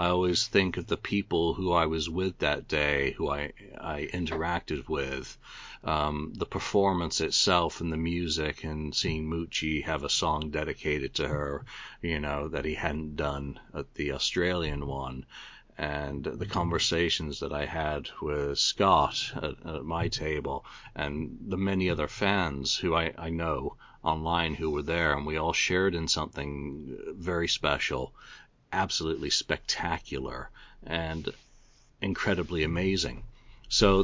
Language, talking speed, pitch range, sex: English, 145 wpm, 75-90 Hz, male